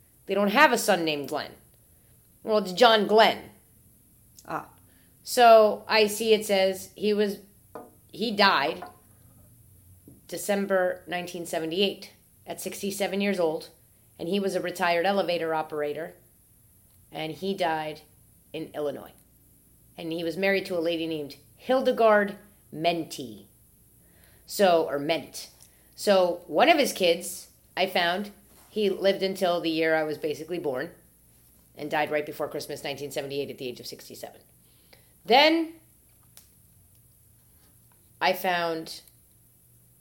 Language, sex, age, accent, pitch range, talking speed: English, female, 30-49, American, 140-195 Hz, 125 wpm